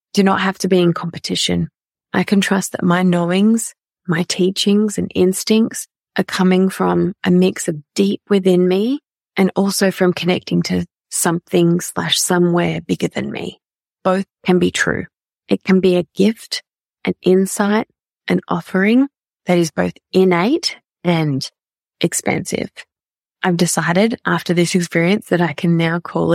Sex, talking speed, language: female, 150 wpm, English